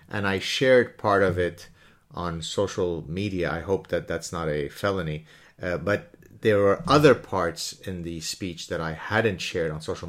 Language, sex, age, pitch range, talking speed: English, male, 30-49, 85-105 Hz, 185 wpm